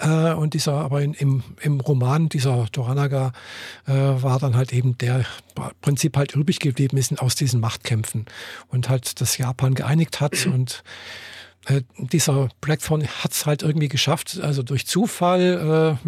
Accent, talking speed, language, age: German, 160 wpm, German, 50-69